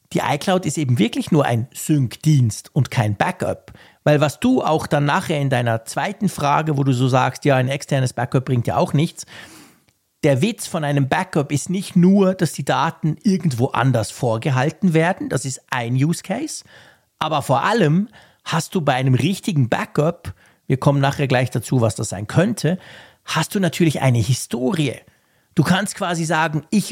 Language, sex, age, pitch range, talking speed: German, male, 50-69, 130-170 Hz, 180 wpm